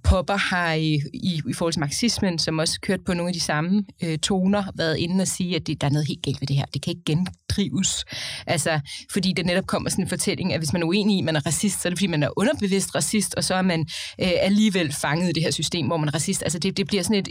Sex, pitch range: female, 170-205 Hz